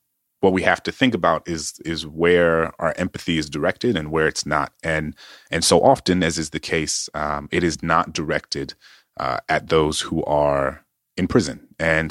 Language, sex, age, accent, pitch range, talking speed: English, male, 30-49, American, 80-95 Hz, 190 wpm